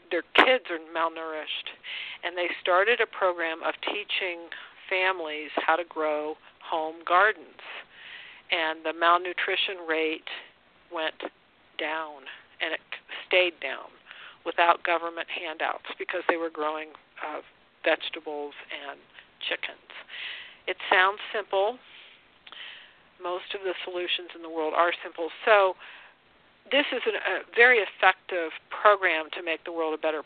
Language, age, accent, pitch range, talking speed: English, 50-69, American, 160-190 Hz, 125 wpm